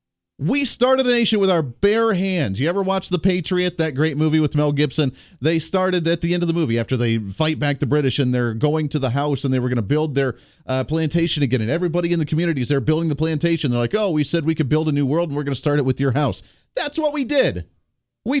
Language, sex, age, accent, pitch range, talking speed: English, male, 40-59, American, 130-175 Hz, 270 wpm